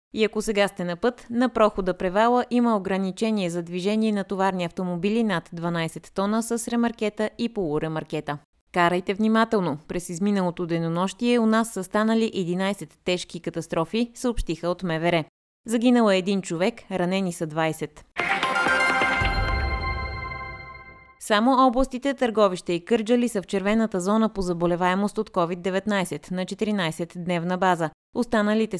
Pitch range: 170-215 Hz